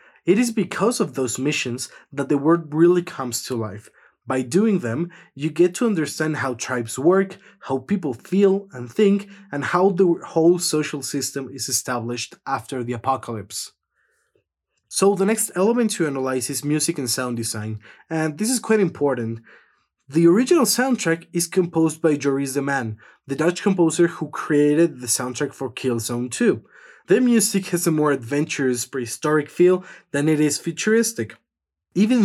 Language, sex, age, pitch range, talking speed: English, male, 20-39, 125-175 Hz, 165 wpm